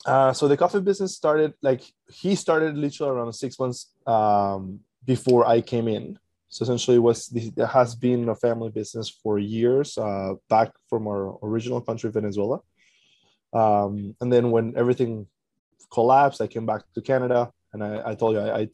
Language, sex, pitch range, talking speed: English, male, 105-125 Hz, 175 wpm